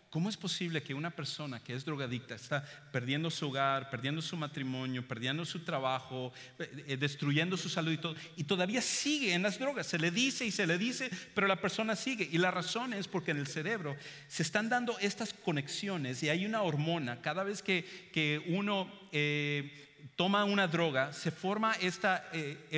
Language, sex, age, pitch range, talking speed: English, male, 50-69, 140-185 Hz, 185 wpm